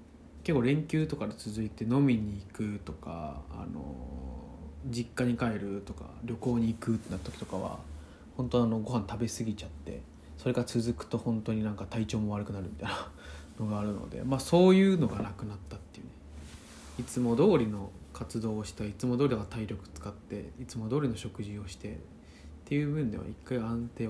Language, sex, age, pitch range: Japanese, male, 20-39, 75-120 Hz